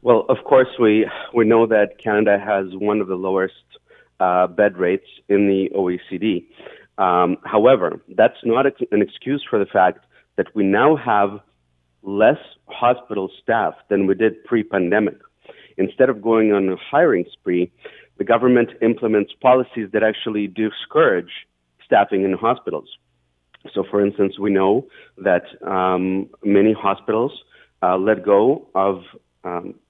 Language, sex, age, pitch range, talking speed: English, male, 40-59, 95-110 Hz, 145 wpm